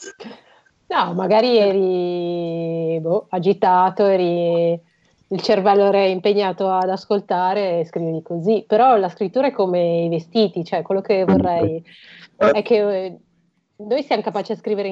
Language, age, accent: Italian, 30-49, native